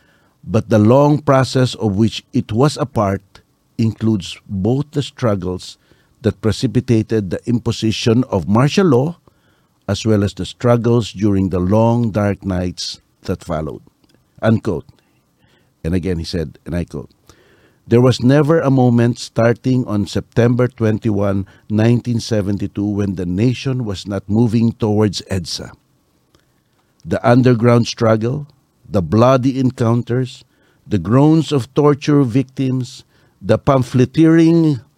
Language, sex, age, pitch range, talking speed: Filipino, male, 50-69, 105-135 Hz, 120 wpm